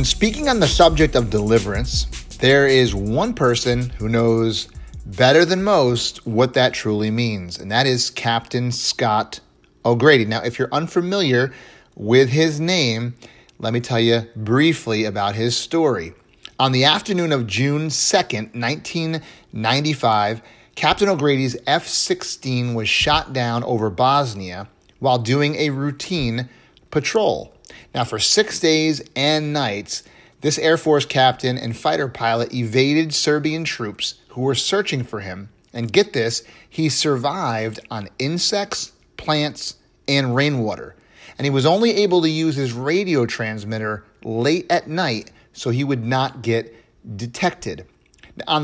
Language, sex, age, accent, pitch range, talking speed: English, male, 30-49, American, 115-155 Hz, 140 wpm